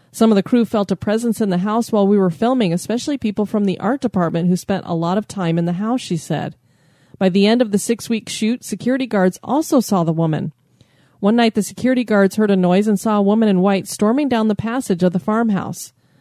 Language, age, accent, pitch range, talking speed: English, 30-49, American, 180-225 Hz, 240 wpm